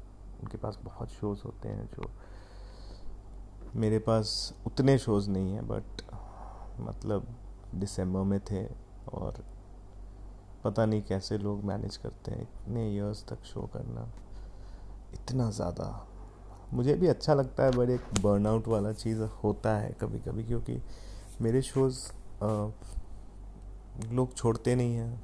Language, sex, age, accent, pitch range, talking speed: Hindi, male, 30-49, native, 95-115 Hz, 130 wpm